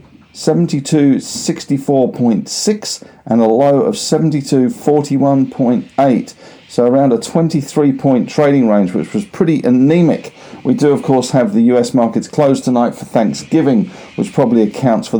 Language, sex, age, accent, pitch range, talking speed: English, male, 50-69, British, 115-155 Hz, 120 wpm